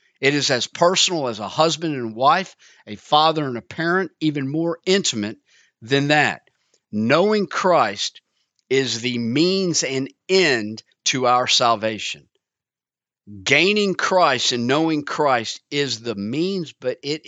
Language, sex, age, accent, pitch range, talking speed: English, male, 50-69, American, 120-160 Hz, 135 wpm